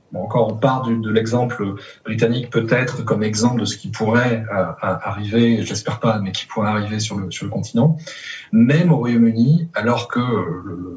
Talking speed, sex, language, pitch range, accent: 185 wpm, male, French, 100-120 Hz, French